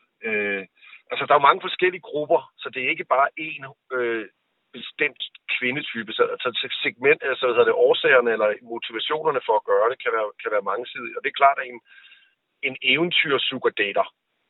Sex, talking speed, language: male, 175 wpm, Danish